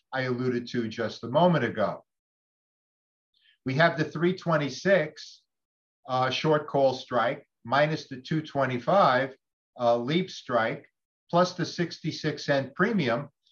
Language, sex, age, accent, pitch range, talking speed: English, male, 50-69, American, 120-160 Hz, 115 wpm